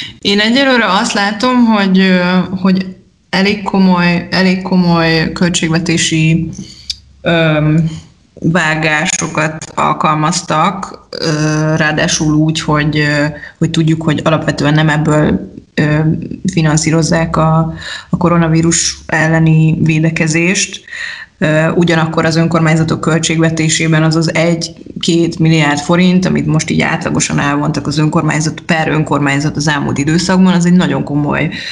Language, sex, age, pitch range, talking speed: Hungarian, female, 20-39, 155-175 Hz, 95 wpm